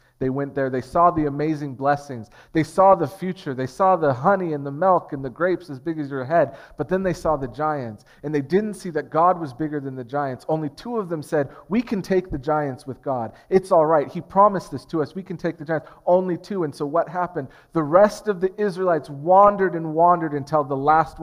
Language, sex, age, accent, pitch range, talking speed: English, male, 40-59, American, 135-175 Hz, 245 wpm